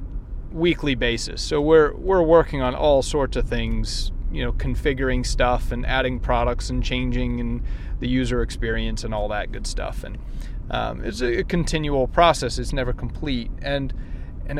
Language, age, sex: English, 30-49, male